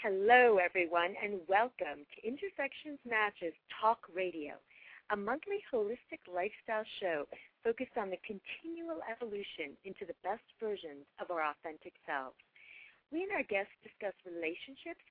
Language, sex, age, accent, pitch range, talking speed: English, female, 40-59, American, 180-260 Hz, 130 wpm